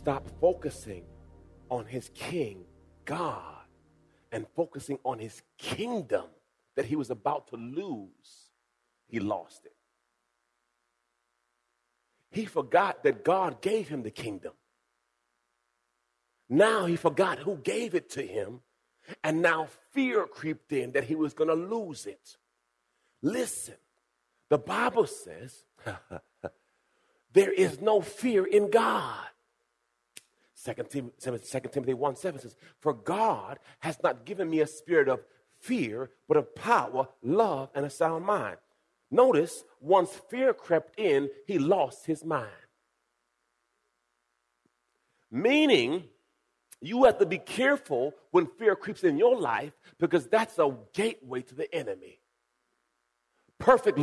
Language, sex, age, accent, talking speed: English, male, 40-59, American, 120 wpm